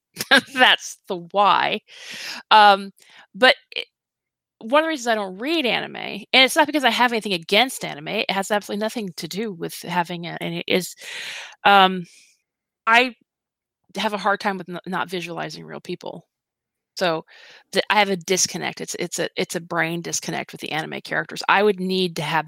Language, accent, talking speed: English, American, 170 wpm